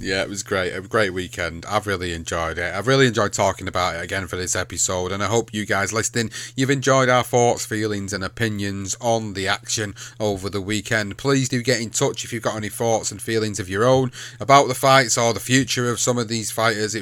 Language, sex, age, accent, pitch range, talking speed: English, male, 30-49, British, 105-125 Hz, 235 wpm